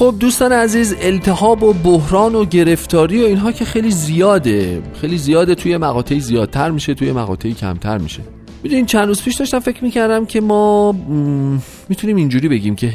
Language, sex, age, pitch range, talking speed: Persian, male, 40-59, 105-160 Hz, 165 wpm